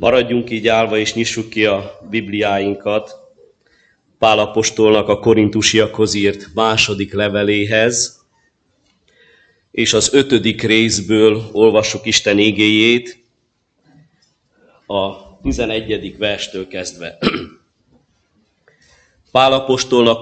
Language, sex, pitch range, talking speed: Hungarian, male, 110-140 Hz, 75 wpm